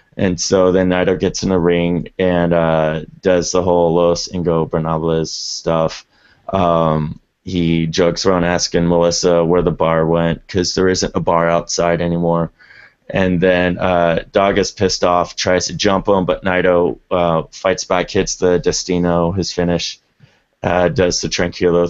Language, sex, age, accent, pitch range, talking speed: English, male, 30-49, American, 85-100 Hz, 160 wpm